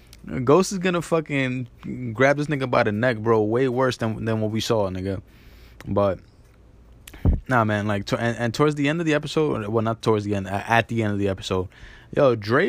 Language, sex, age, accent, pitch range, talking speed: English, male, 20-39, American, 105-130 Hz, 215 wpm